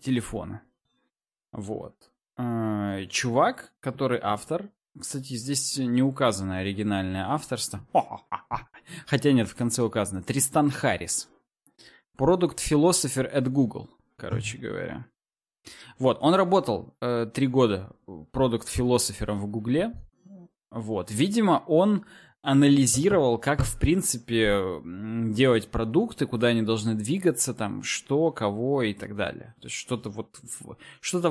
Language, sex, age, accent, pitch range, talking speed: Russian, male, 20-39, native, 110-150 Hz, 100 wpm